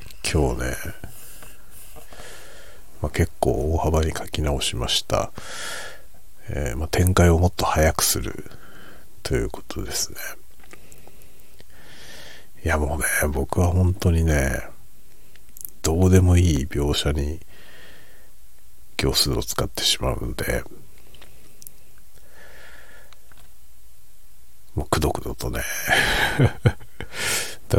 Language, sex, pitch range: Japanese, male, 75-95 Hz